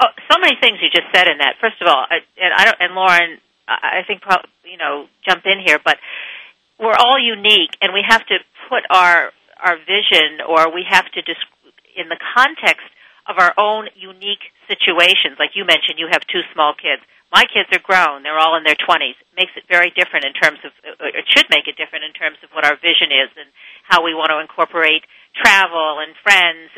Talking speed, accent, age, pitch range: 215 wpm, American, 50-69, 165-215 Hz